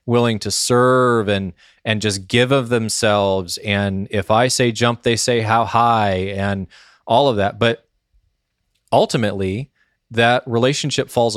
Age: 20-39